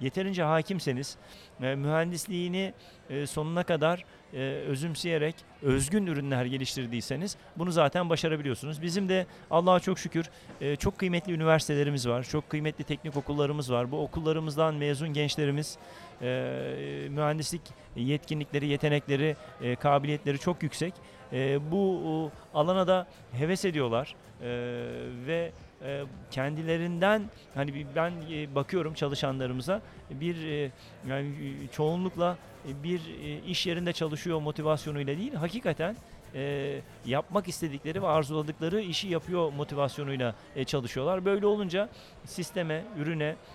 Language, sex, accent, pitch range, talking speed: Turkish, male, native, 140-175 Hz, 100 wpm